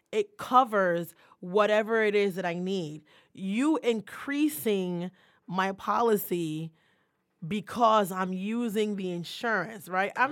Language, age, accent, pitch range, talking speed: English, 20-39, American, 180-230 Hz, 110 wpm